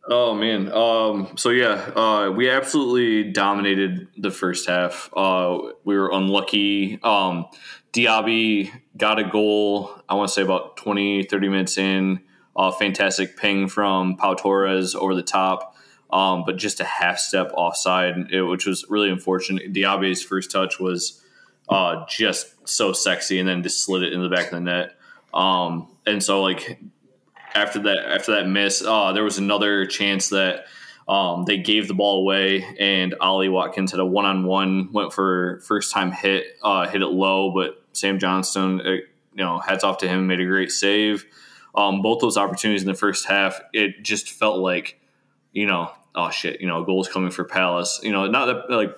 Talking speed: 180 wpm